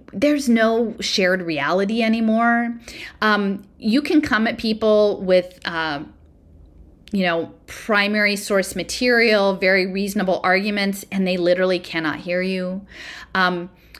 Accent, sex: American, female